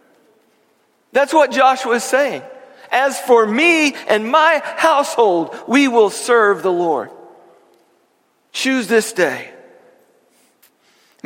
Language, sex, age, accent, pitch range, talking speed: English, male, 50-69, American, 170-250 Hz, 105 wpm